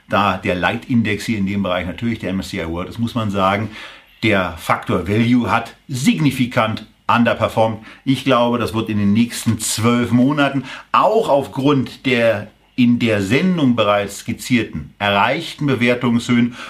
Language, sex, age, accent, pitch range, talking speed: German, male, 50-69, German, 110-140 Hz, 145 wpm